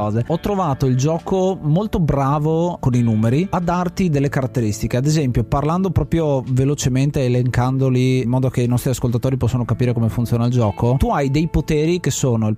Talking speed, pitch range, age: 180 wpm, 120-150 Hz, 30-49